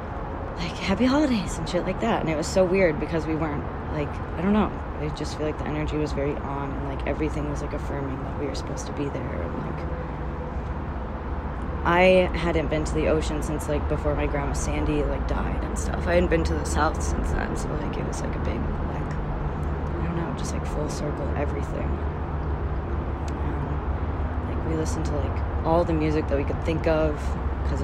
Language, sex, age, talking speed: English, female, 20-39, 210 wpm